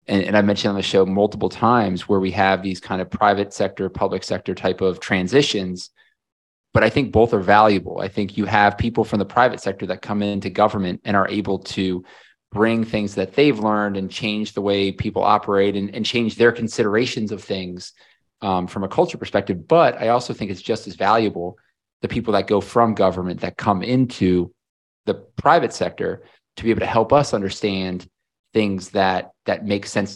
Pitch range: 95-110 Hz